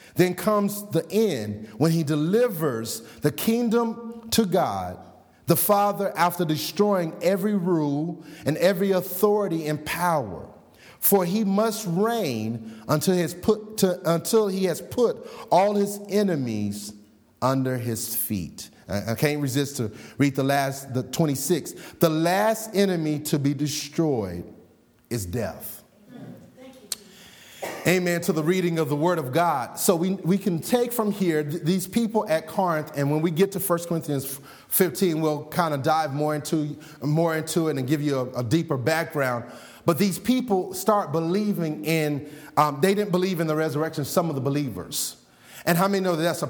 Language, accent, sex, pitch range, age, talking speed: English, American, male, 145-195 Hz, 30-49, 160 wpm